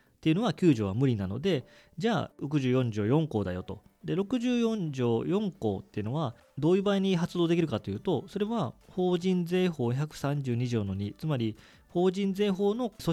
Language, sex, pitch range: Japanese, male, 115-170 Hz